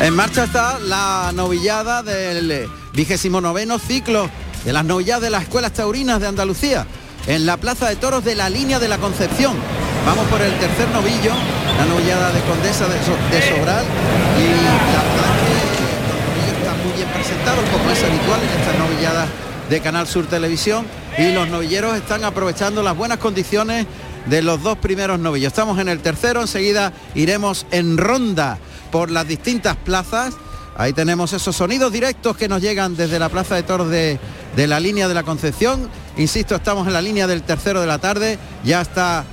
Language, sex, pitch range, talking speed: Spanish, male, 165-210 Hz, 180 wpm